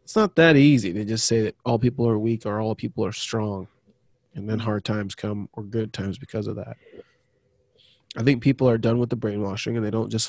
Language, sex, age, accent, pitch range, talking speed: English, male, 20-39, American, 110-125 Hz, 235 wpm